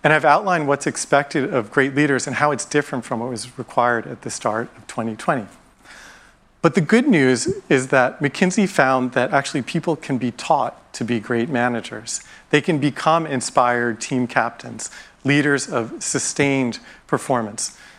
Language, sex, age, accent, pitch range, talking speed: English, male, 40-59, American, 120-150 Hz, 165 wpm